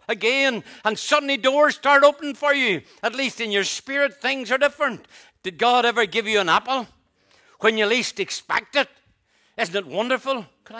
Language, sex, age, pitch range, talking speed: English, male, 60-79, 195-275 Hz, 180 wpm